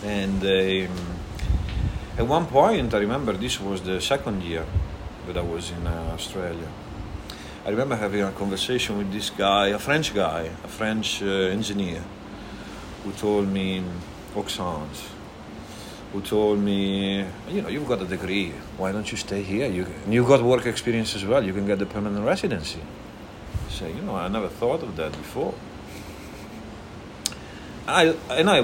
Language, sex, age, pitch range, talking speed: English, male, 40-59, 85-105 Hz, 160 wpm